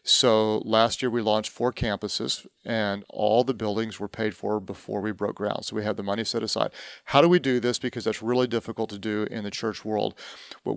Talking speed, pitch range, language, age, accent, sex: 230 wpm, 105-120 Hz, English, 40-59, American, male